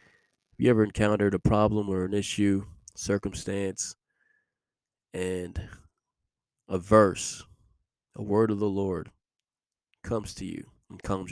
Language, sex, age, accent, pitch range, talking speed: English, male, 20-39, American, 95-105 Hz, 115 wpm